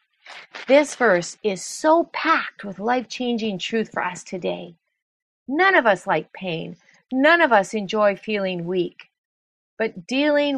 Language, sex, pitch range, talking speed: English, female, 190-255 Hz, 135 wpm